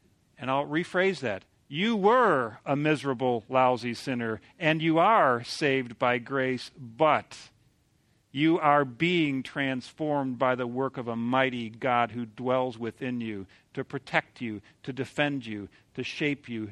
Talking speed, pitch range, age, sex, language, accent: 145 wpm, 115-150 Hz, 50-69, male, English, American